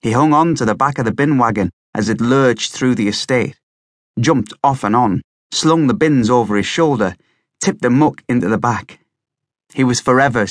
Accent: British